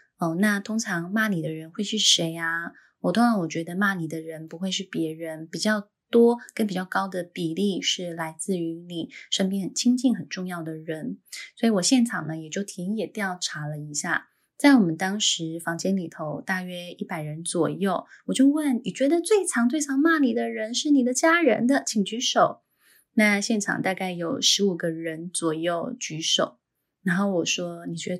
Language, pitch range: Chinese, 165-225 Hz